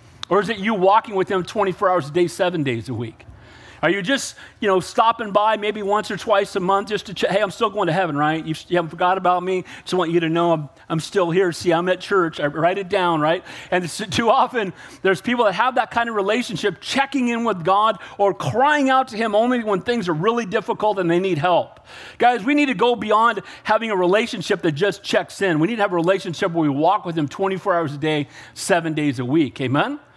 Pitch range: 160-235 Hz